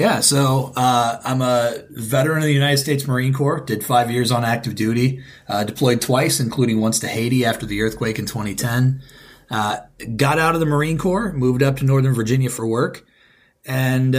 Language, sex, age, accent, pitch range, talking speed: English, male, 30-49, American, 115-140 Hz, 190 wpm